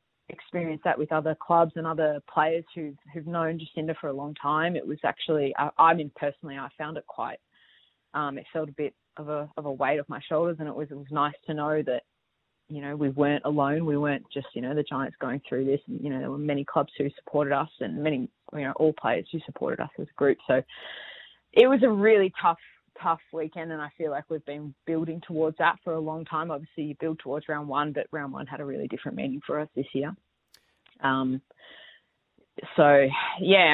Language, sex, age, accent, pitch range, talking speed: English, female, 20-39, Australian, 140-160 Hz, 230 wpm